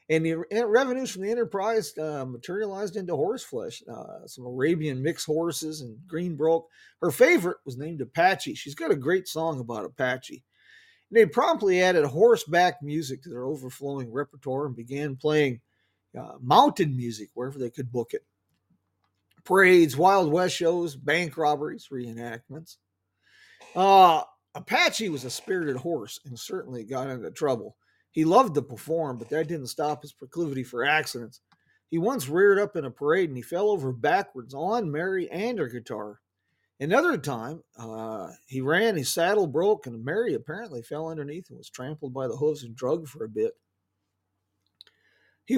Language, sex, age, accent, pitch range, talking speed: English, male, 40-59, American, 130-190 Hz, 165 wpm